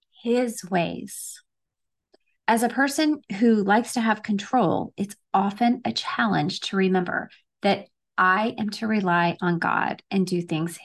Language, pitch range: English, 190-245 Hz